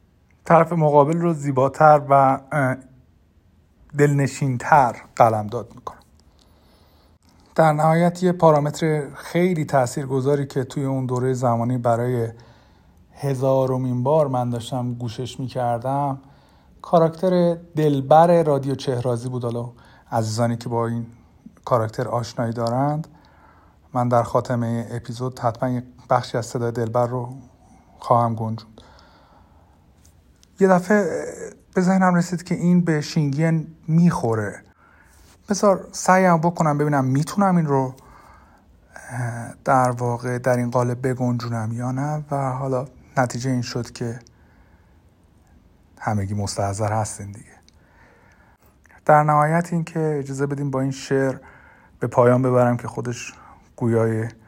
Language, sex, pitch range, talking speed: Persian, male, 115-145 Hz, 115 wpm